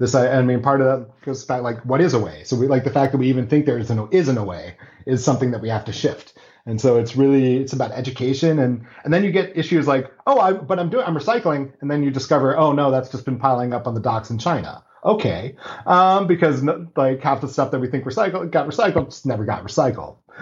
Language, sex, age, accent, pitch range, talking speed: English, male, 30-49, American, 120-140 Hz, 260 wpm